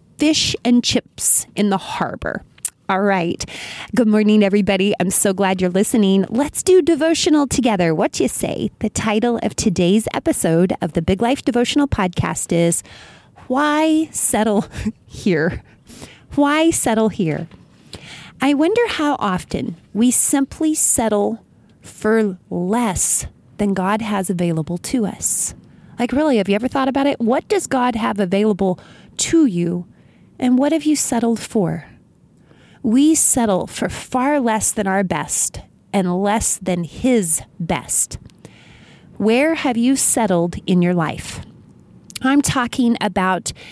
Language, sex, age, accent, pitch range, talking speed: English, female, 30-49, American, 190-255 Hz, 140 wpm